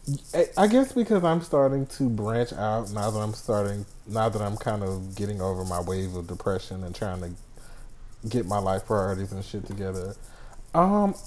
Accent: American